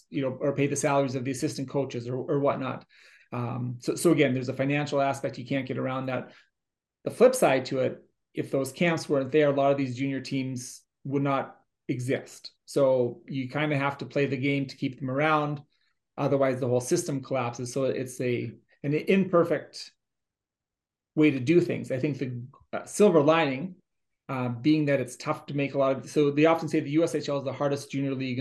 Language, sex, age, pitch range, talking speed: English, male, 30-49, 130-150 Hz, 205 wpm